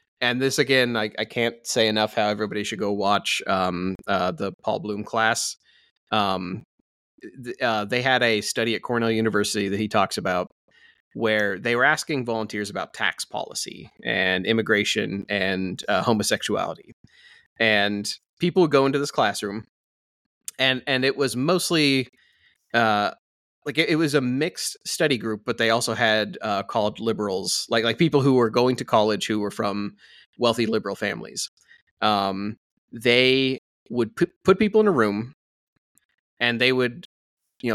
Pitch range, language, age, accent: 105-130 Hz, English, 30-49, American